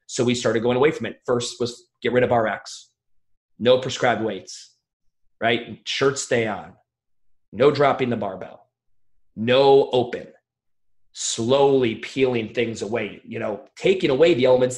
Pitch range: 120-170 Hz